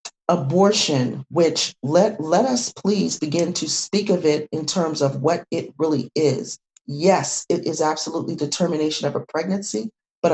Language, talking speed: English, 165 wpm